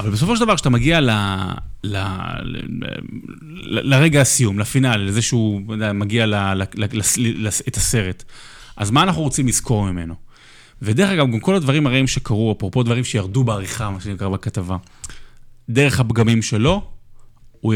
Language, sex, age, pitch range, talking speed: Hebrew, male, 20-39, 100-125 Hz, 160 wpm